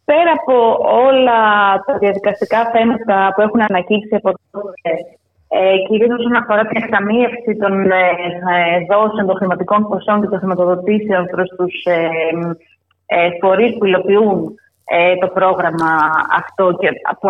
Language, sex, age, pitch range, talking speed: Greek, female, 20-39, 185-260 Hz, 120 wpm